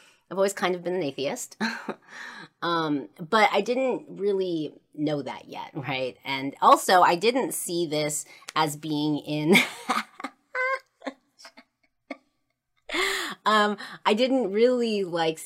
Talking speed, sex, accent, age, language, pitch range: 115 wpm, female, American, 30-49, English, 140-185 Hz